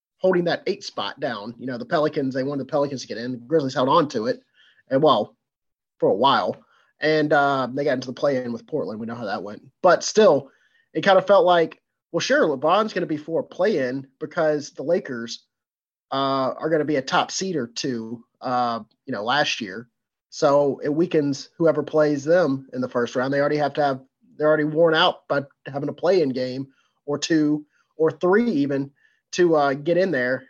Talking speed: 220 wpm